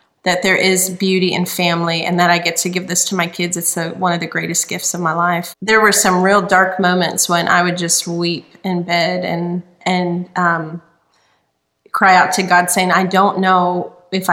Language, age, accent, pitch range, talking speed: English, 30-49, American, 175-195 Hz, 215 wpm